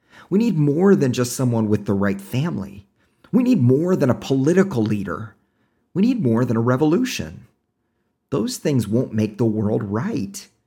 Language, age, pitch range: English, 40-59, 105-135 Hz